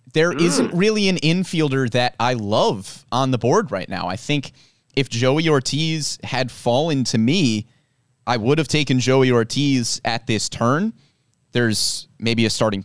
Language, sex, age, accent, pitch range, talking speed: English, male, 30-49, American, 120-160 Hz, 165 wpm